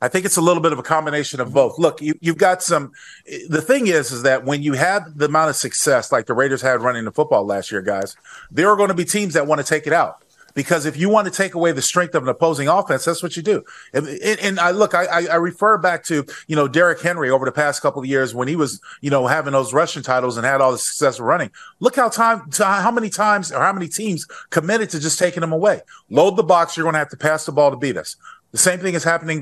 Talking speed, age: 280 wpm, 40-59